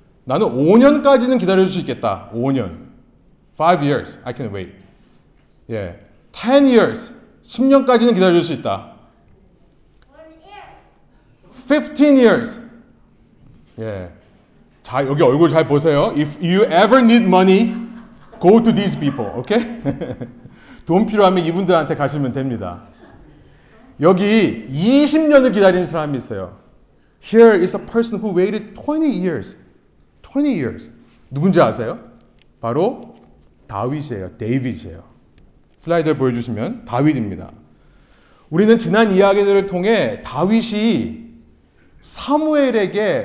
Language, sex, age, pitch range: Korean, male, 40-59, 140-230 Hz